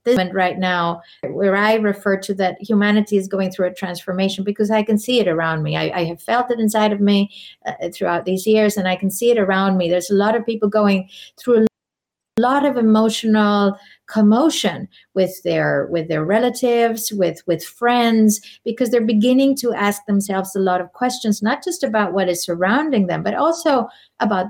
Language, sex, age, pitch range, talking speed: English, female, 50-69, 185-225 Hz, 200 wpm